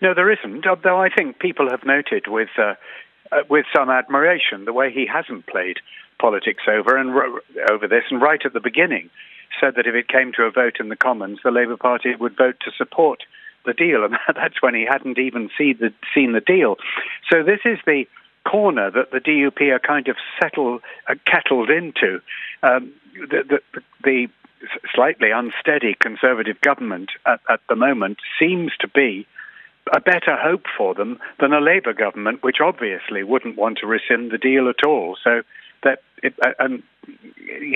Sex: male